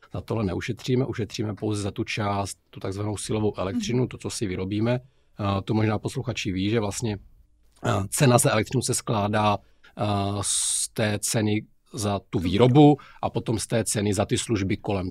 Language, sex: Czech, male